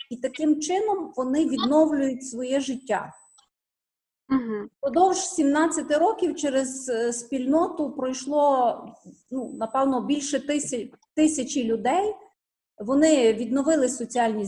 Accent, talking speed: native, 85 wpm